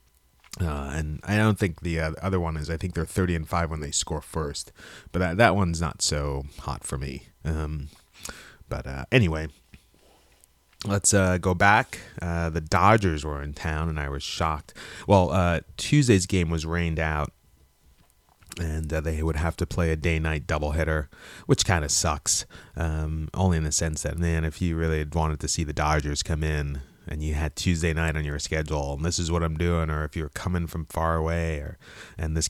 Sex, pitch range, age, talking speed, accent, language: male, 75-85 Hz, 30-49, 205 wpm, American, English